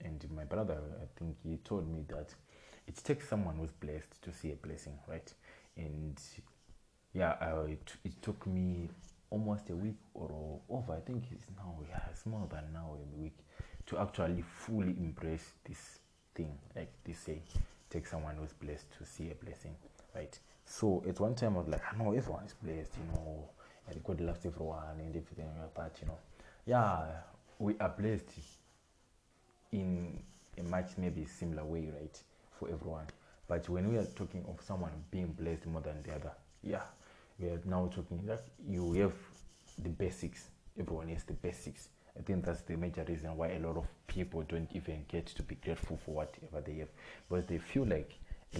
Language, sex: English, male